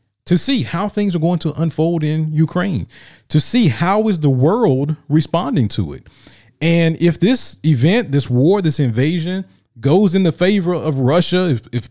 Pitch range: 135-180 Hz